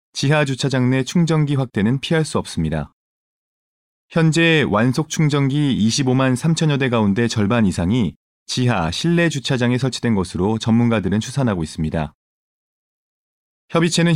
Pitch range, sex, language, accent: 110-155 Hz, male, Korean, native